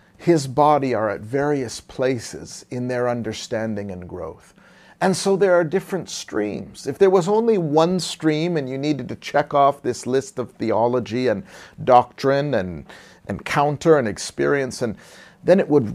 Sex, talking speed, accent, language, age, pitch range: male, 160 wpm, American, English, 50-69, 120-160 Hz